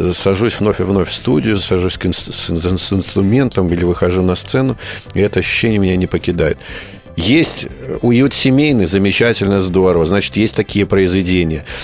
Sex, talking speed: male, 140 wpm